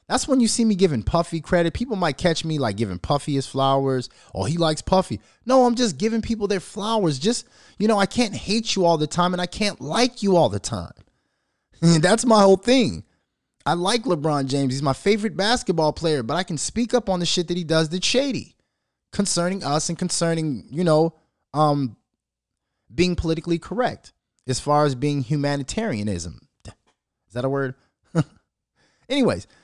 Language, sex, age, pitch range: English, male, 20-39, 135-195 Hz